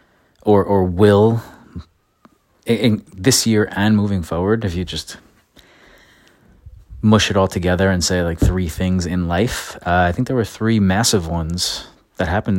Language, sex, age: English, male, 30-49